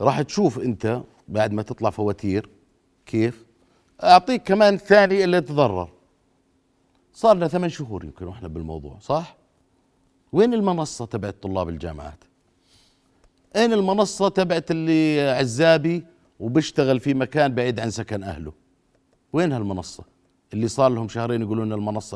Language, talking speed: Arabic, 125 wpm